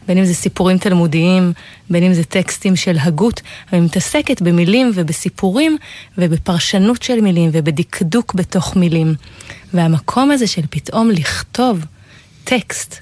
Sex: female